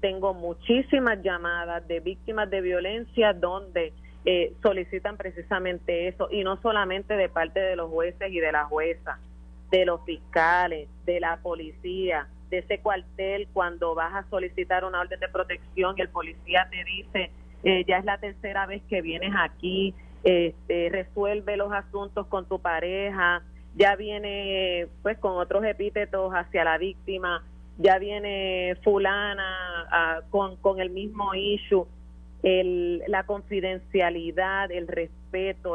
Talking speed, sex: 145 wpm, female